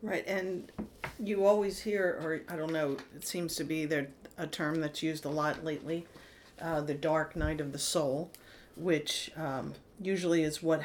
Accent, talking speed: American, 185 wpm